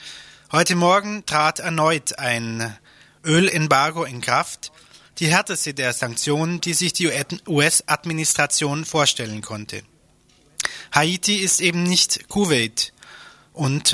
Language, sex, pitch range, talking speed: German, male, 135-175 Hz, 105 wpm